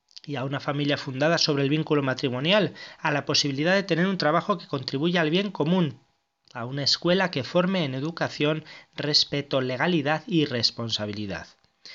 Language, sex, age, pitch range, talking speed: Spanish, male, 20-39, 135-175 Hz, 160 wpm